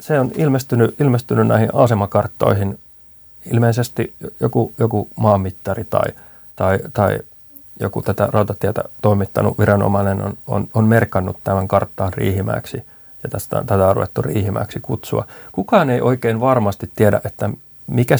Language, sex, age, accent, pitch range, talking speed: Finnish, male, 30-49, native, 105-120 Hz, 125 wpm